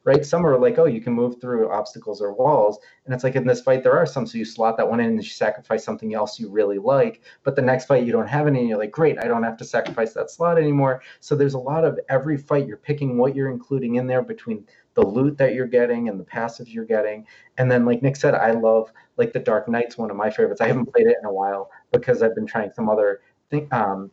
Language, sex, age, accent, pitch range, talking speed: English, male, 30-49, American, 120-170 Hz, 270 wpm